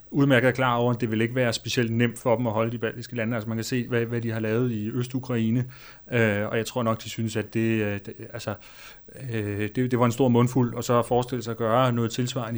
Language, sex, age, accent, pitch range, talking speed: Danish, male, 30-49, native, 110-125 Hz, 260 wpm